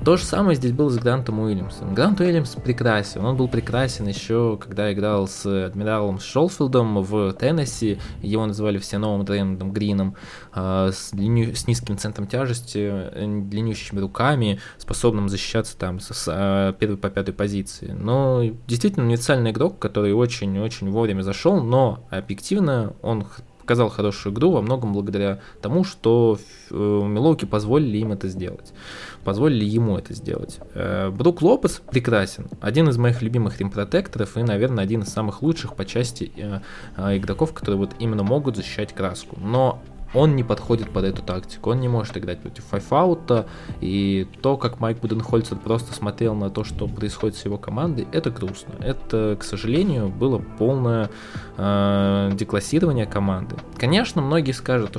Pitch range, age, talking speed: 100-125 Hz, 20-39, 150 wpm